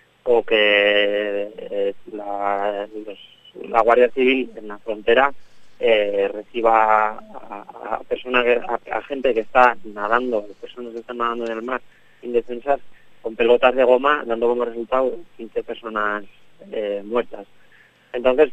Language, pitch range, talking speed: Spanish, 115-145 Hz, 135 wpm